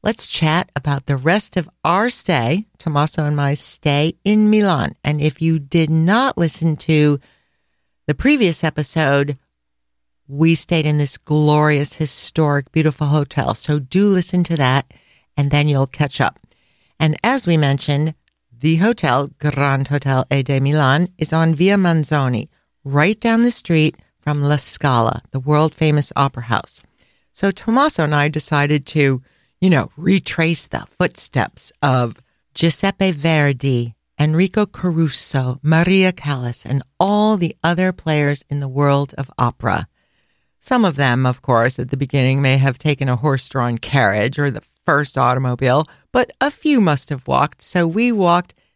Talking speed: 150 wpm